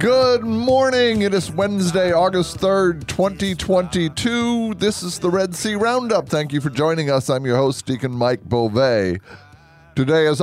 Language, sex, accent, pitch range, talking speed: English, male, American, 120-165 Hz, 155 wpm